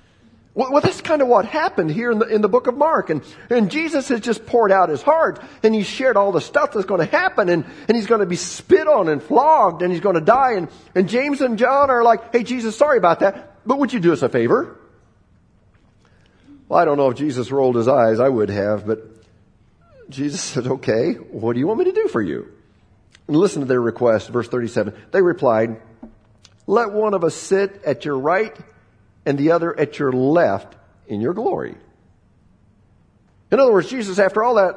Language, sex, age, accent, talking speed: English, male, 50-69, American, 215 wpm